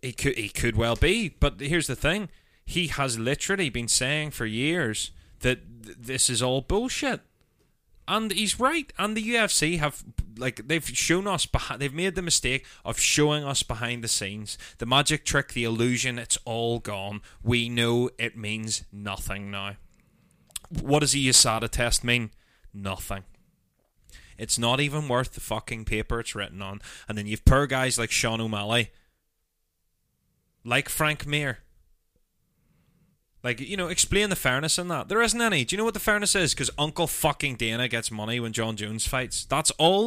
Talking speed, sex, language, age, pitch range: 170 wpm, male, English, 20-39, 110-165 Hz